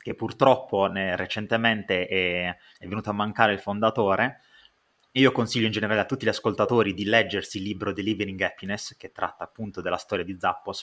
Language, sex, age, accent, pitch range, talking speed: Italian, male, 30-49, native, 100-125 Hz, 175 wpm